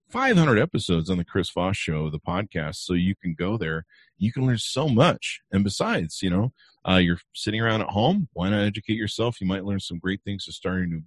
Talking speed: 235 wpm